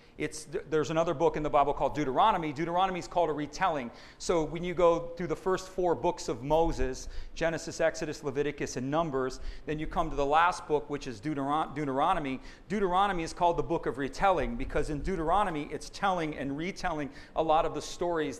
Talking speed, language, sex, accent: 195 wpm, English, male, American